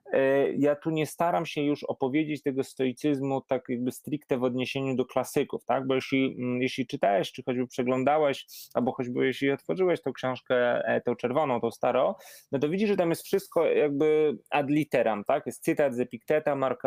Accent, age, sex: native, 20-39, male